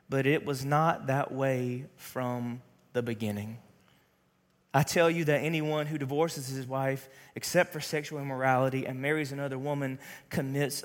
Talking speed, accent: 150 wpm, American